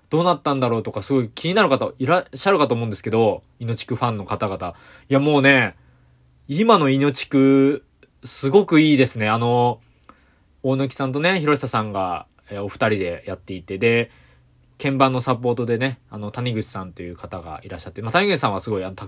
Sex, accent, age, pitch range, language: male, native, 20-39, 105-145 Hz, Japanese